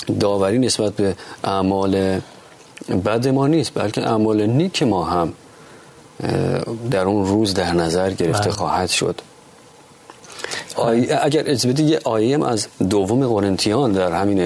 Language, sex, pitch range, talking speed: Persian, male, 95-120 Hz, 130 wpm